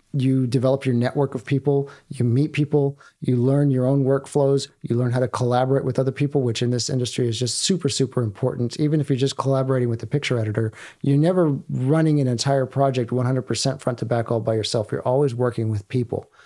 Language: English